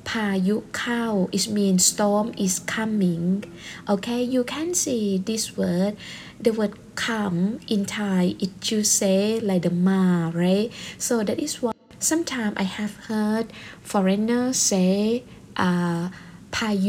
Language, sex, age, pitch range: Thai, female, 20-39, 185-225 Hz